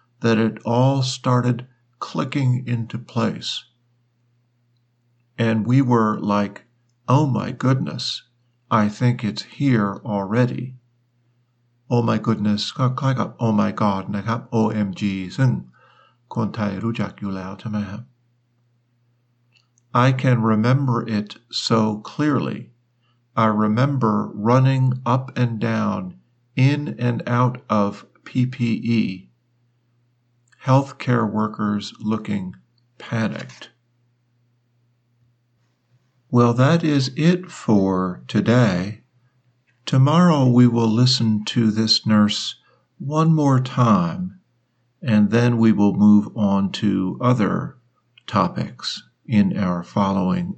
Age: 50-69